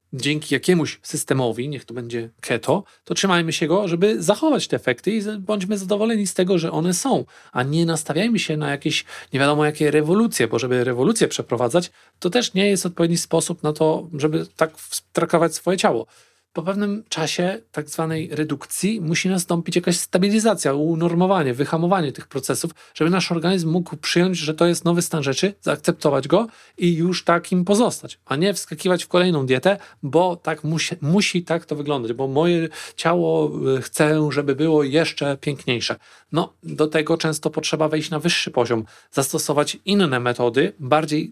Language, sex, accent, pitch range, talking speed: Polish, male, native, 150-175 Hz, 165 wpm